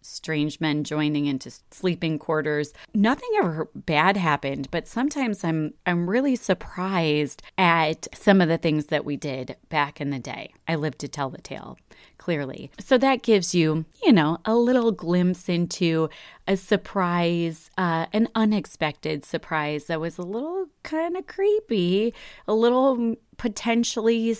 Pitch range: 155-210 Hz